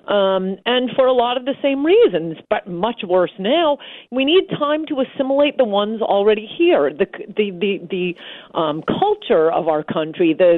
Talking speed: 180 wpm